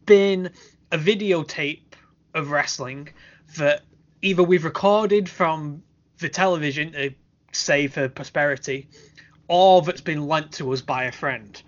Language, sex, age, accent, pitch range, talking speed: English, male, 10-29, British, 145-180 Hz, 130 wpm